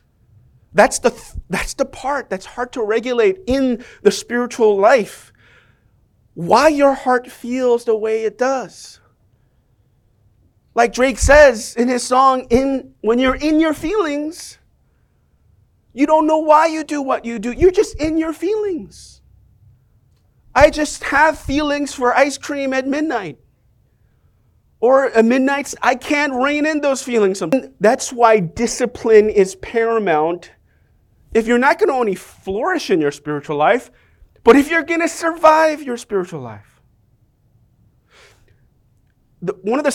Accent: American